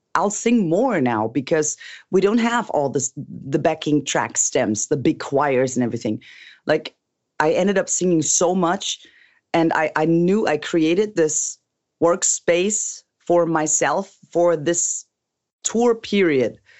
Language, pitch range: English, 150-185 Hz